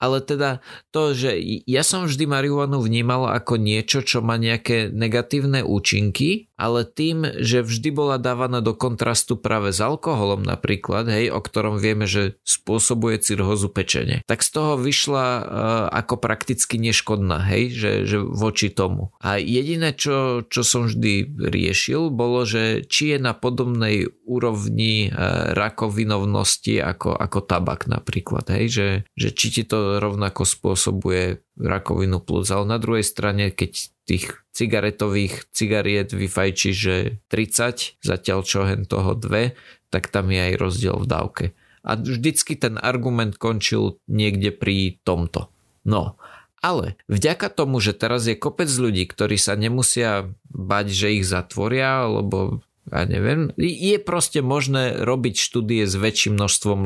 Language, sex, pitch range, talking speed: Slovak, male, 100-125 Hz, 145 wpm